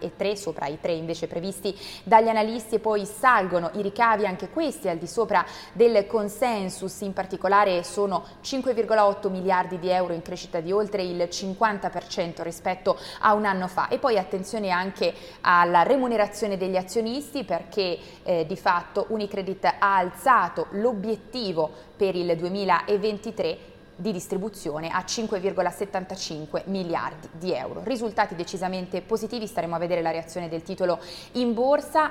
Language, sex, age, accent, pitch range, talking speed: Italian, female, 20-39, native, 175-215 Hz, 145 wpm